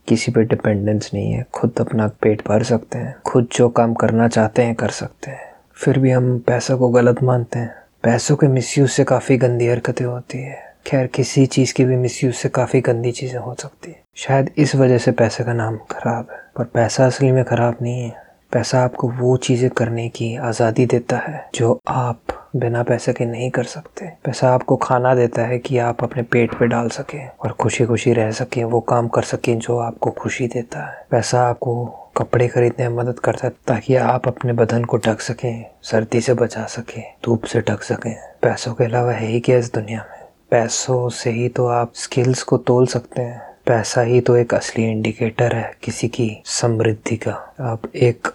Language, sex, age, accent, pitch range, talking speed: Hindi, male, 20-39, native, 115-125 Hz, 200 wpm